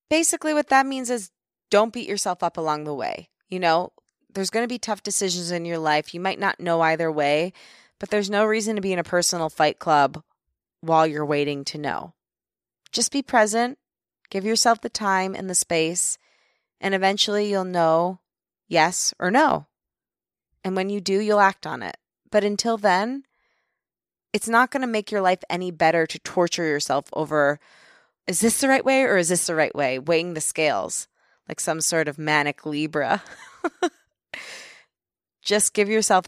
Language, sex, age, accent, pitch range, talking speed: English, female, 20-39, American, 160-225 Hz, 180 wpm